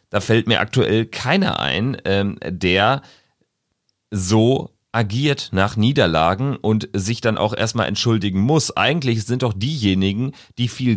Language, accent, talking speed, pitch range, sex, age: German, German, 130 wpm, 90-115 Hz, male, 40-59